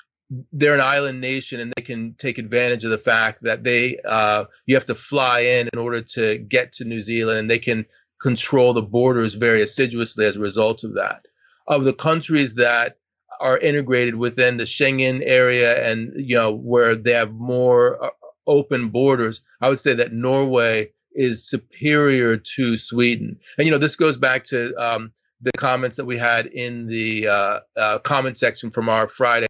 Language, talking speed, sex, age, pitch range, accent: English, 185 wpm, male, 30-49, 115-135 Hz, American